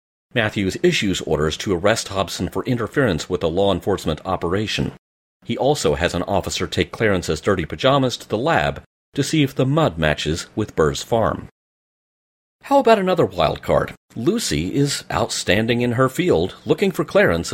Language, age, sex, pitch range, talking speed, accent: English, 40-59, male, 80-115 Hz, 165 wpm, American